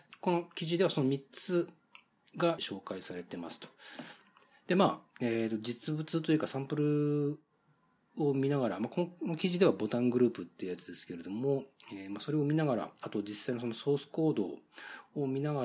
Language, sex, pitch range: Japanese, male, 105-150 Hz